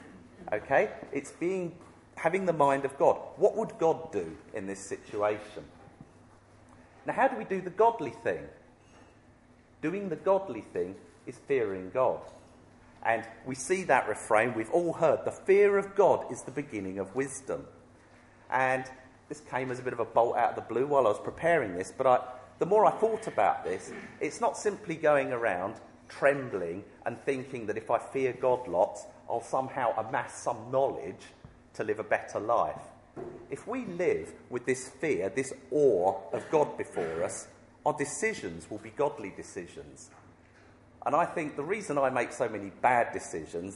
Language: English